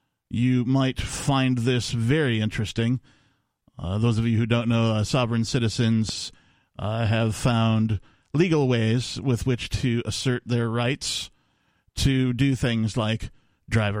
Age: 40-59